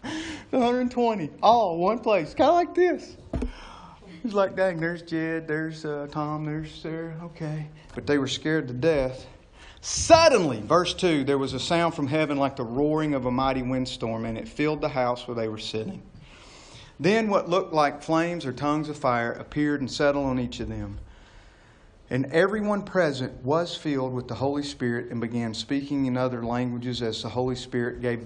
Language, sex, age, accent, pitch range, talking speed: English, male, 40-59, American, 120-160 Hz, 185 wpm